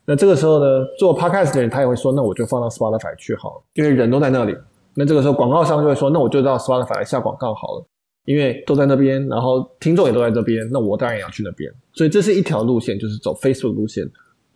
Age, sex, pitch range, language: 20-39, male, 110-140 Hz, Chinese